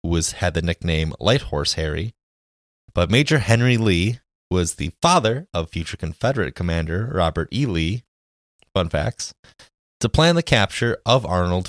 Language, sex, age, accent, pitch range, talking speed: English, male, 20-39, American, 85-120 Hz, 155 wpm